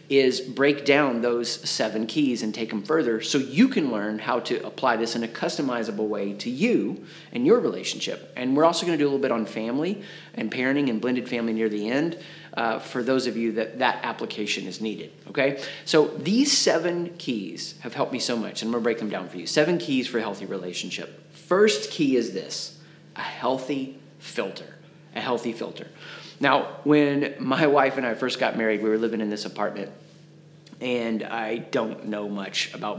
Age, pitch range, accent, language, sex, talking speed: 30-49, 115-155 Hz, American, English, male, 200 wpm